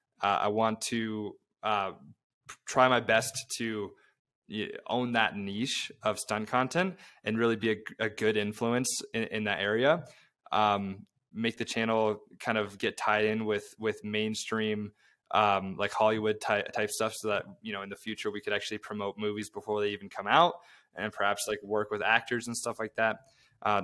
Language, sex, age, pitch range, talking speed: English, male, 20-39, 105-115 Hz, 185 wpm